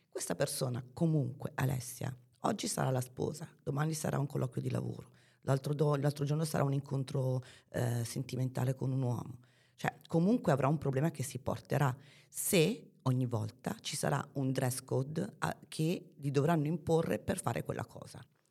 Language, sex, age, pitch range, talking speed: Italian, female, 30-49, 130-155 Hz, 165 wpm